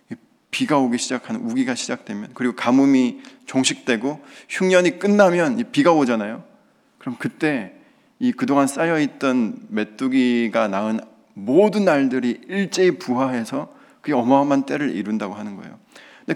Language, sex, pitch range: Korean, male, 140-220 Hz